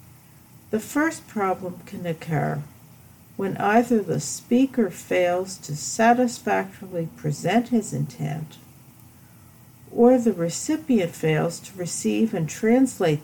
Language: English